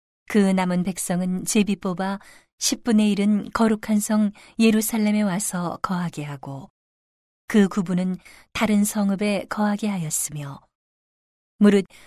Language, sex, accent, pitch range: Korean, female, native, 180-210 Hz